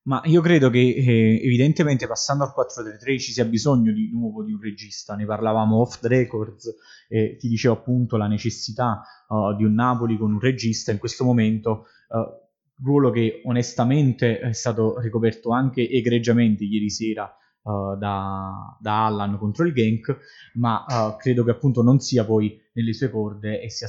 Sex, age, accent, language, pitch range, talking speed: male, 20-39, native, Italian, 110-125 Hz, 170 wpm